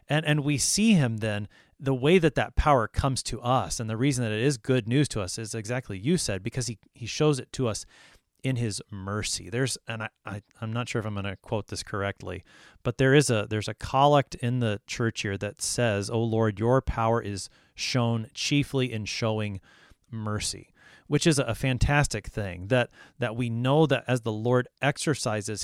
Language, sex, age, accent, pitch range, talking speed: English, male, 30-49, American, 105-135 Hz, 210 wpm